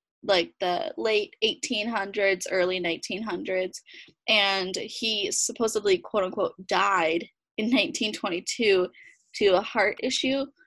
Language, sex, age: English, female, 10-29